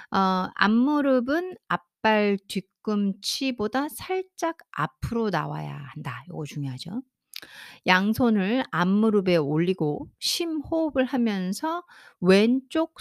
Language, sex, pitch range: Korean, female, 165-250 Hz